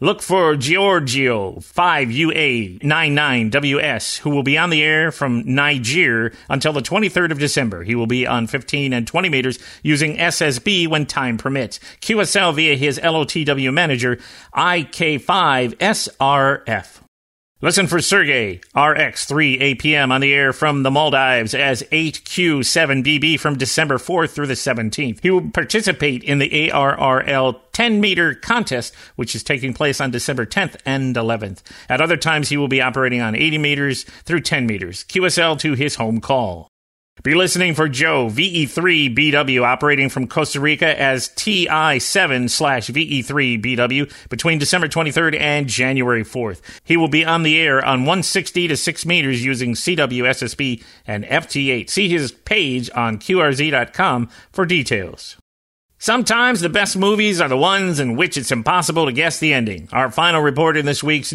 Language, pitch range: English, 125-165 Hz